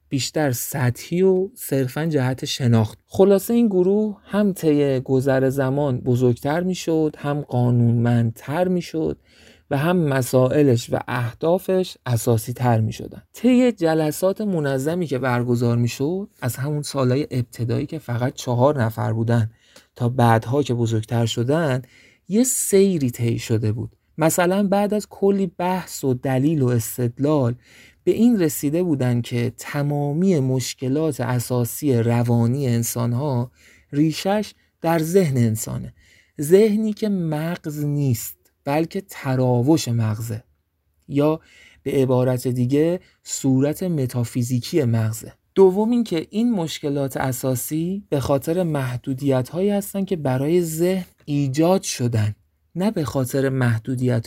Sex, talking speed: male, 125 wpm